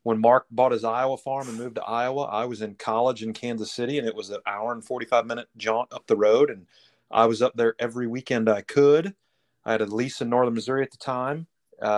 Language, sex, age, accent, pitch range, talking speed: English, male, 30-49, American, 110-120 Hz, 245 wpm